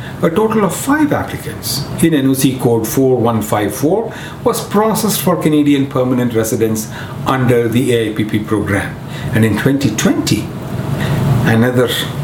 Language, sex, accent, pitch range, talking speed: English, male, Indian, 120-175 Hz, 115 wpm